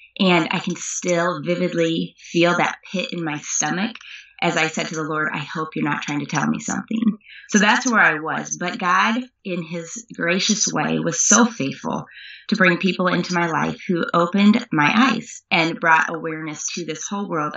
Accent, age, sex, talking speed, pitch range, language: American, 20-39, female, 195 wpm, 155-195 Hz, English